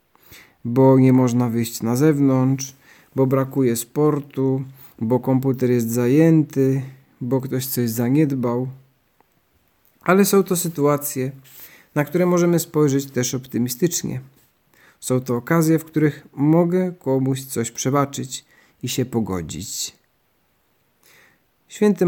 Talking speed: 110 wpm